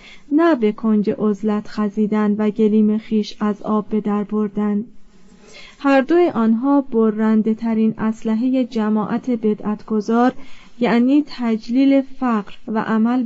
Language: Persian